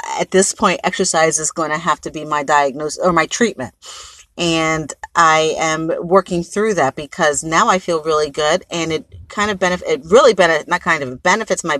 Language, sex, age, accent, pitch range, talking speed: English, female, 40-59, American, 160-220 Hz, 205 wpm